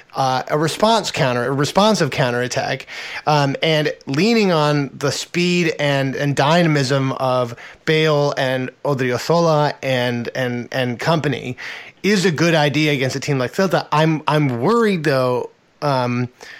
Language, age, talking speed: English, 20-39, 135 wpm